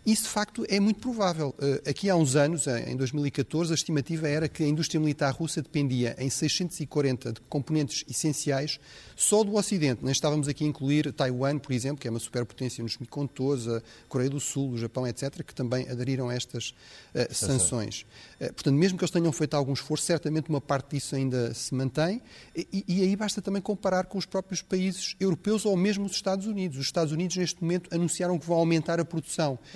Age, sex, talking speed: 30-49, male, 200 wpm